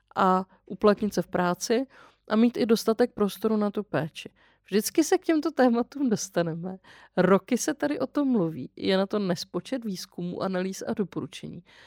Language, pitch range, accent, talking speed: Czech, 180-225 Hz, native, 165 wpm